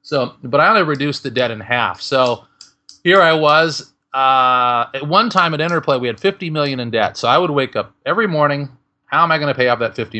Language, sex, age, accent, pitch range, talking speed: English, male, 30-49, American, 120-150 Hz, 240 wpm